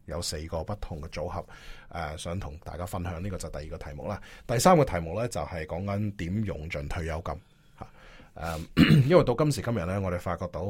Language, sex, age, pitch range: Chinese, male, 20-39, 85-110 Hz